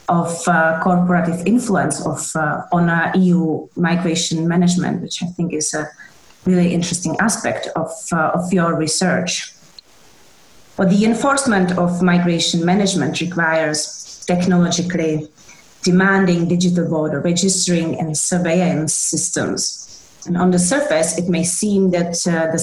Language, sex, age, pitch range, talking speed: Czech, female, 30-49, 165-185 Hz, 130 wpm